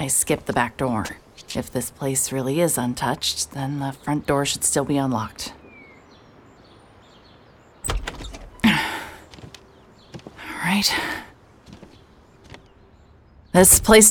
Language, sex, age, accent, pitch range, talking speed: English, female, 40-59, American, 115-170 Hz, 95 wpm